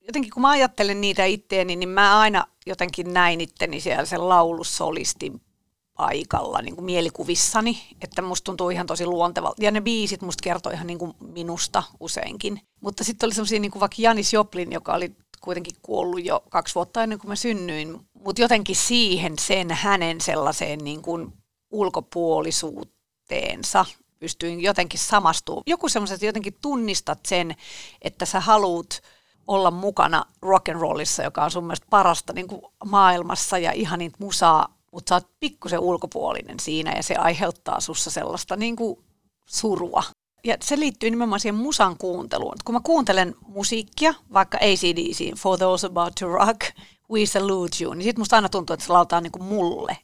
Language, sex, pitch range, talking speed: Finnish, female, 175-215 Hz, 165 wpm